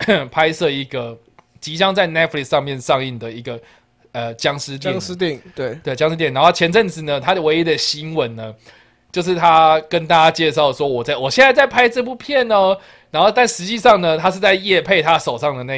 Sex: male